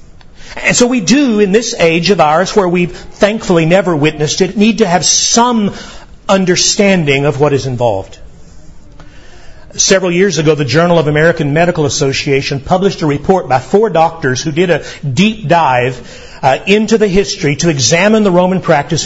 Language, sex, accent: English, male, American